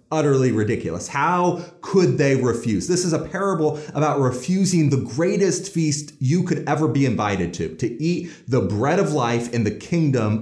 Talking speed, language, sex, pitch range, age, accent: 175 wpm, English, male, 120-165 Hz, 30-49, American